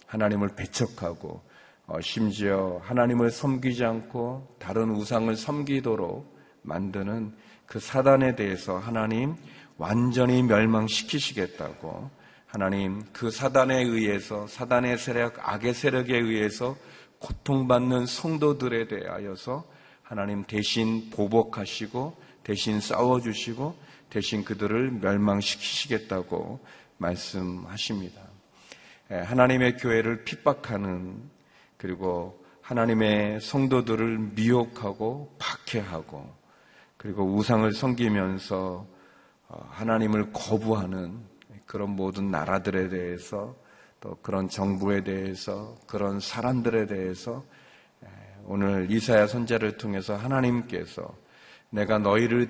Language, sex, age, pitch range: Korean, male, 40-59, 100-120 Hz